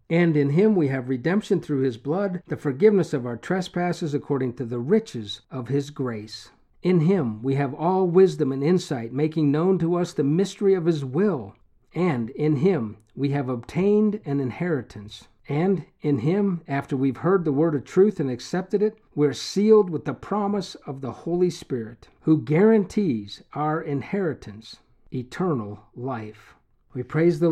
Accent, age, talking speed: American, 50-69, 170 wpm